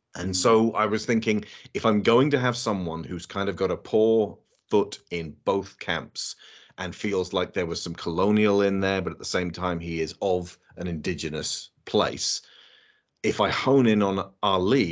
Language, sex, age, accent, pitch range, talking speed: English, male, 30-49, British, 90-110 Hz, 190 wpm